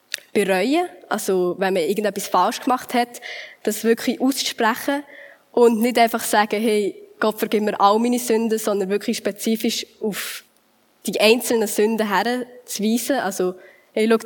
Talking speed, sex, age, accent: 135 wpm, female, 10-29, Swiss